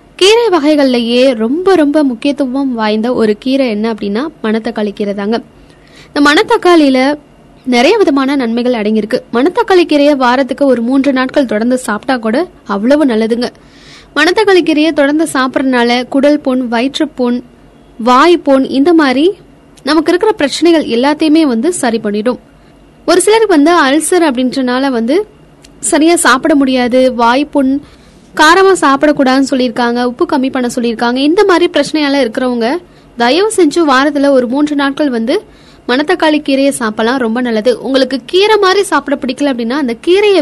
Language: Tamil